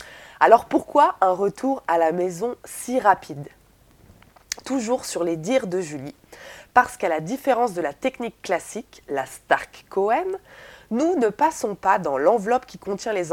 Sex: female